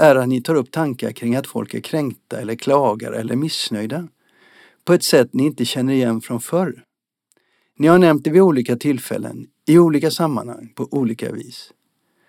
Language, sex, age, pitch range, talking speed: Swedish, male, 50-69, 120-160 Hz, 180 wpm